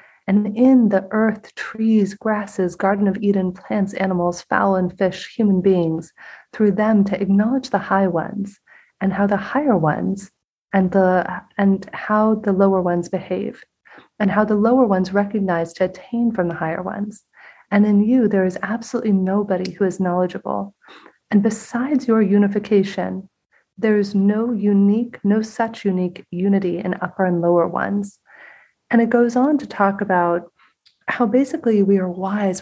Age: 30-49